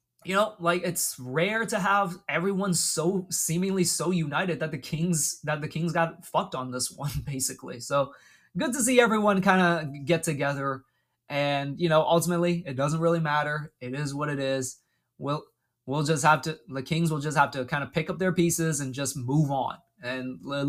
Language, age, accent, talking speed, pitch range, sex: English, 20-39, American, 205 wpm, 130-170 Hz, male